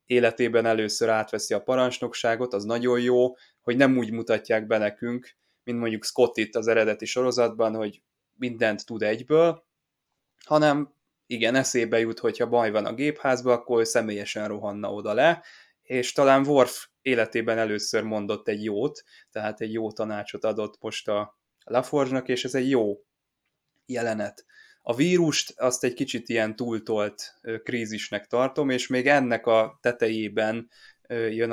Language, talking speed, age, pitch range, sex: Hungarian, 145 wpm, 20-39, 110-125 Hz, male